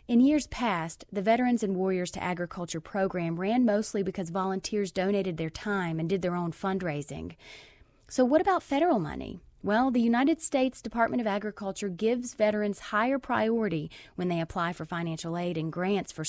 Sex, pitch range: female, 170-230 Hz